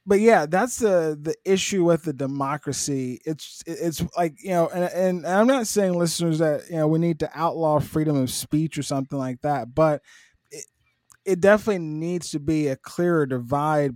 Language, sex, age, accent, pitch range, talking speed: English, male, 20-39, American, 135-165 Hz, 190 wpm